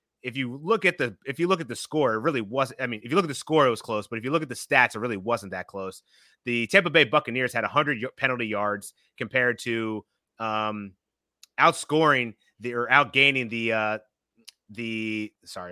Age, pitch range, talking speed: 30-49, 110-135 Hz, 220 wpm